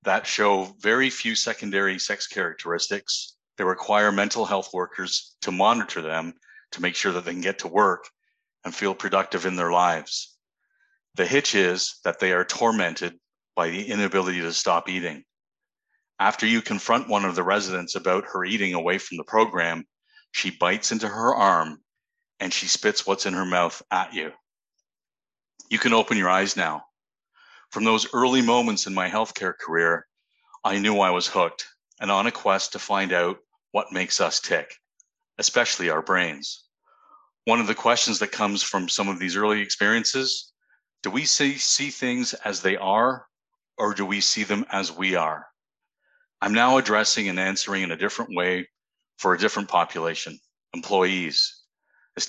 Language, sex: English, male